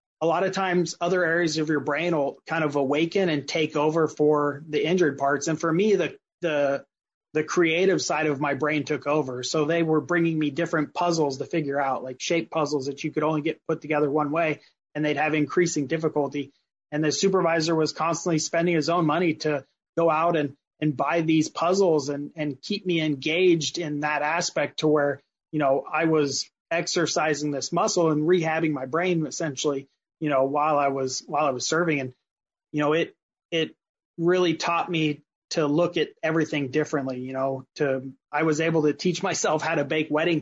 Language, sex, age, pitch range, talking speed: English, male, 30-49, 145-165 Hz, 200 wpm